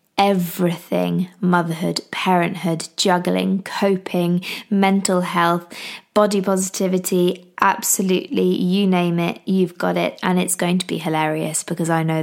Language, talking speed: English, 125 wpm